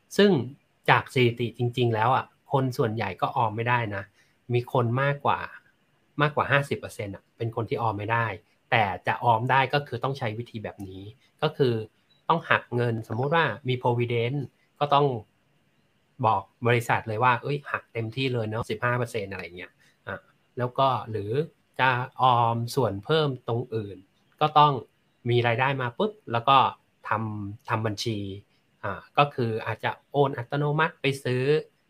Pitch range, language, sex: 110-140 Hz, Thai, male